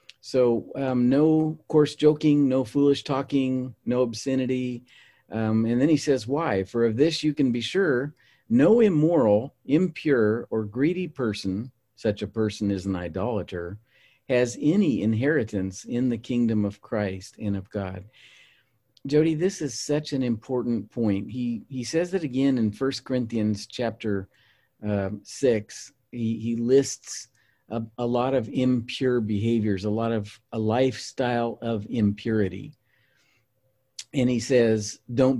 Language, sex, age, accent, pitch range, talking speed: English, male, 50-69, American, 110-135 Hz, 140 wpm